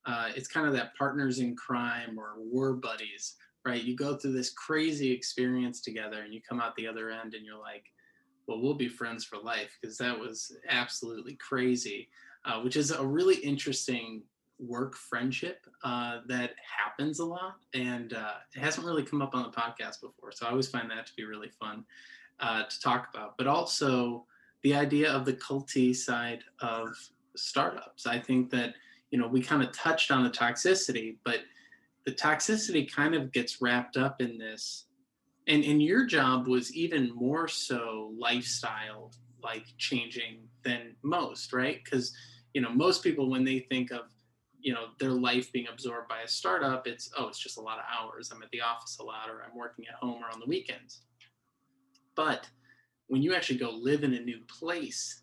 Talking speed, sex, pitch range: 190 wpm, male, 120-140 Hz